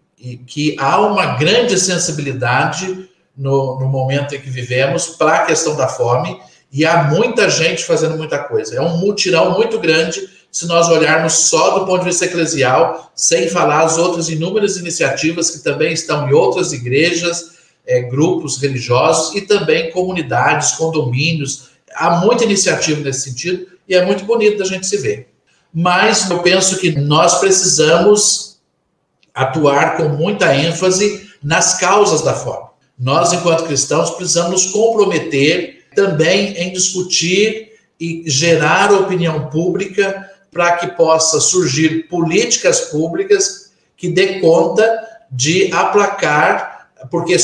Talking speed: 135 wpm